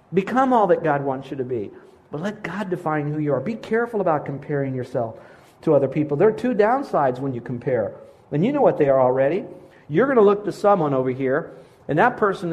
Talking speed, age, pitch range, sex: 230 wpm, 50-69, 150-210 Hz, male